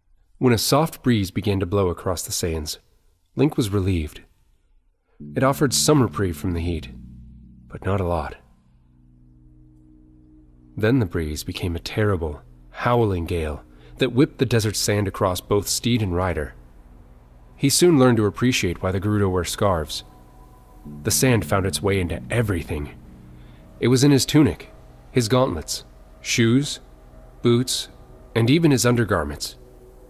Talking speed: 145 wpm